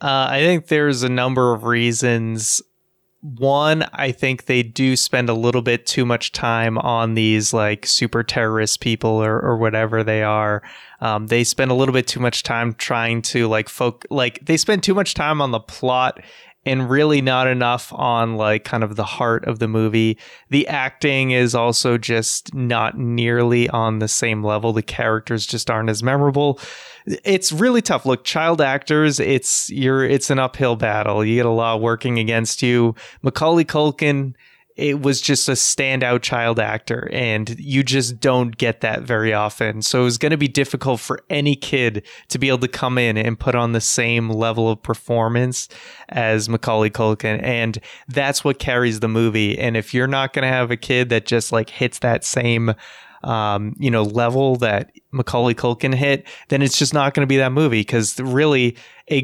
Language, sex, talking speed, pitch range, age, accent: English, male, 190 wpm, 115-140 Hz, 20-39, American